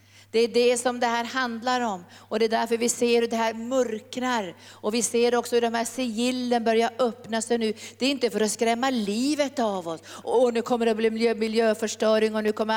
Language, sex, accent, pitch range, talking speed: Swedish, female, native, 200-235 Hz, 230 wpm